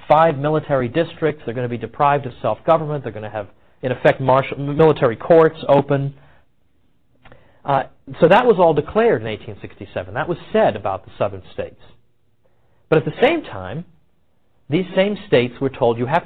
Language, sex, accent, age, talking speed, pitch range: English, male, American, 40-59, 175 wpm, 125-170 Hz